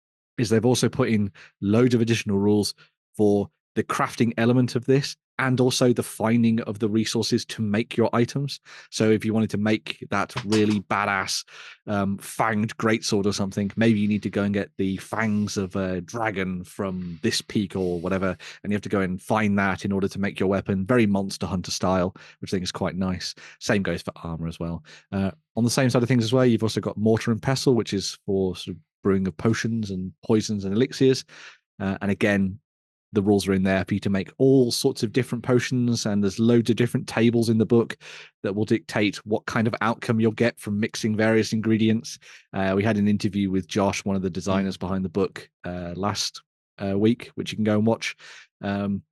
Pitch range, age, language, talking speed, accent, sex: 100-120 Hz, 30-49, English, 215 wpm, British, male